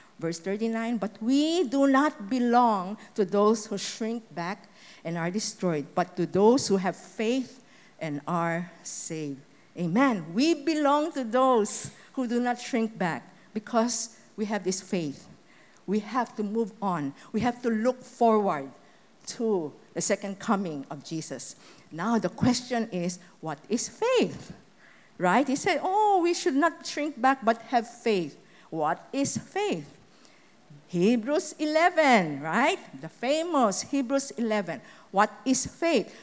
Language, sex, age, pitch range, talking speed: English, female, 50-69, 195-275 Hz, 145 wpm